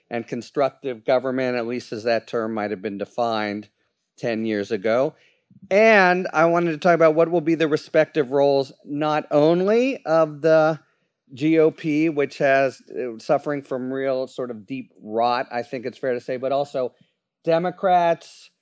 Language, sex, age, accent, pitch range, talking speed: English, male, 40-59, American, 120-155 Hz, 160 wpm